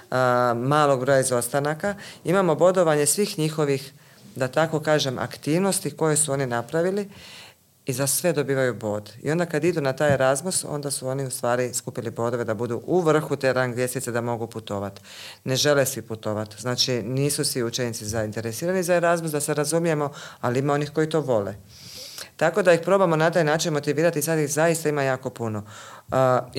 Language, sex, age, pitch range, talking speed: Croatian, female, 40-59, 125-155 Hz, 185 wpm